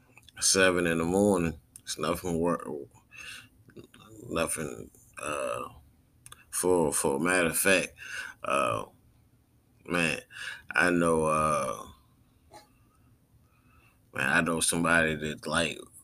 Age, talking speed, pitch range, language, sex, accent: 20-39, 95 wpm, 80-95 Hz, English, male, American